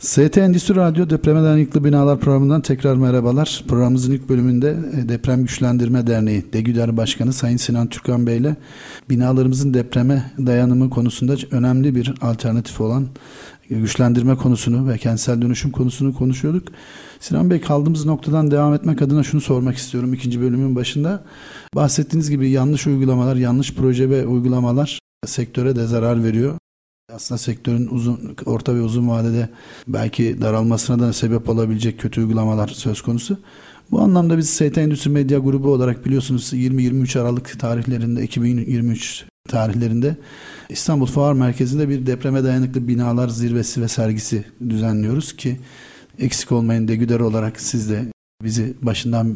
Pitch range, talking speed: 120-140 Hz, 135 wpm